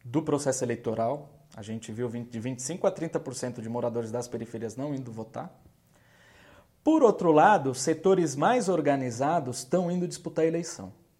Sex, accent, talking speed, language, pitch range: male, Brazilian, 145 wpm, Portuguese, 120-160 Hz